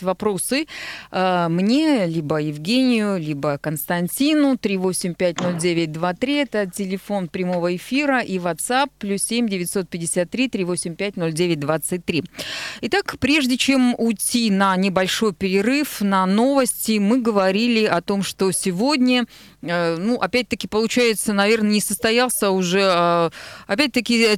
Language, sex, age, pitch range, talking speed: Russian, female, 30-49, 185-235 Hz, 95 wpm